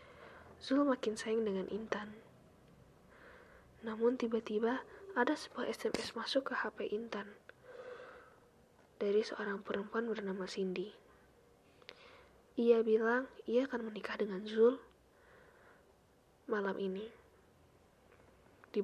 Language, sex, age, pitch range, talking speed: Indonesian, female, 20-39, 200-250 Hz, 90 wpm